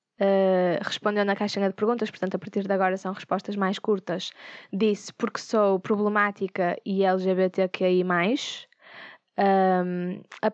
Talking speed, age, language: 120 wpm, 20-39, Portuguese